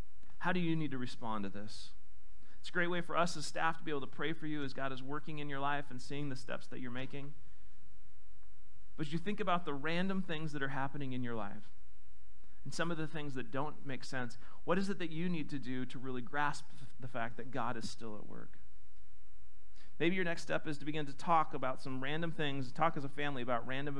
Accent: American